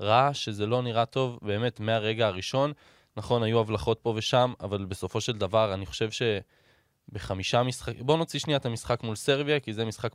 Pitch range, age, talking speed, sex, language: 110-140 Hz, 20-39, 185 wpm, male, Hebrew